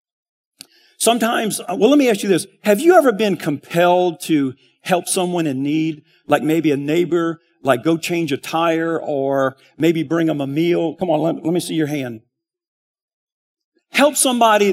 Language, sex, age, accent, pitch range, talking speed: English, male, 50-69, American, 160-210 Hz, 170 wpm